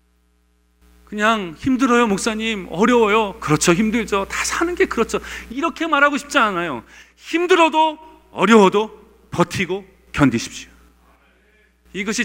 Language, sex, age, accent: Korean, male, 40-59, native